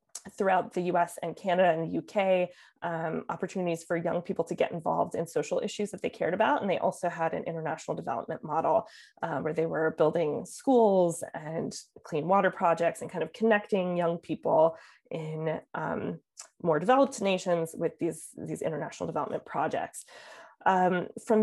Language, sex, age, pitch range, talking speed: English, female, 20-39, 165-195 Hz, 165 wpm